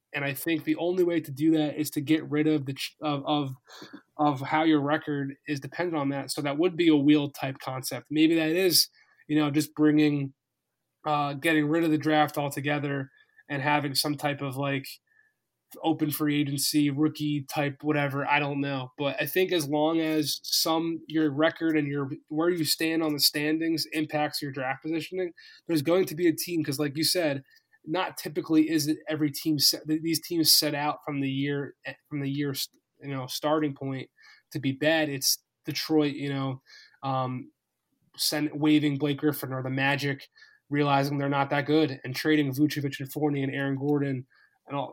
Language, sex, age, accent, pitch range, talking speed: English, male, 20-39, American, 140-155 Hz, 190 wpm